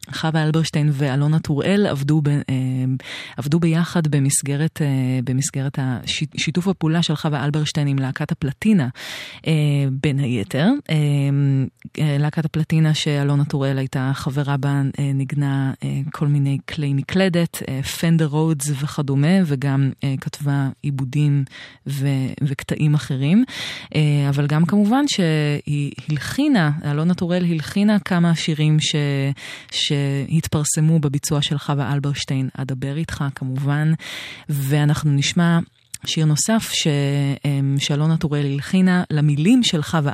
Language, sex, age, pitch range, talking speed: Hebrew, female, 20-39, 140-165 Hz, 105 wpm